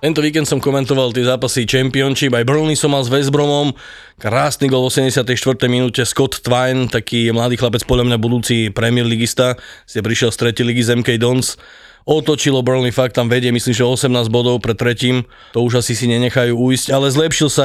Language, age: Slovak, 20-39